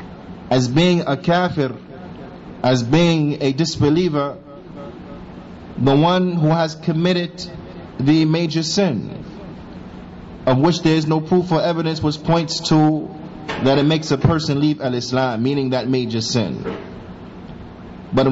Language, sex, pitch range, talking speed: English, male, 140-180 Hz, 130 wpm